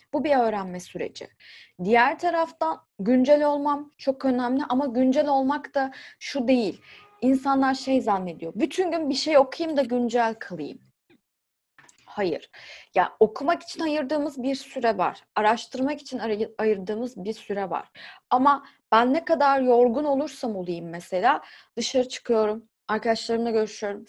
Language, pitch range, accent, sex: Turkish, 215-275 Hz, native, female